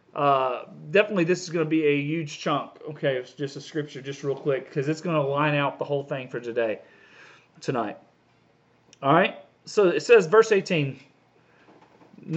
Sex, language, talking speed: male, English, 180 wpm